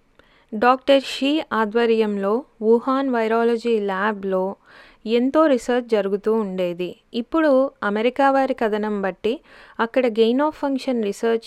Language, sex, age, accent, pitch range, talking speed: Telugu, female, 20-39, native, 210-255 Hz, 105 wpm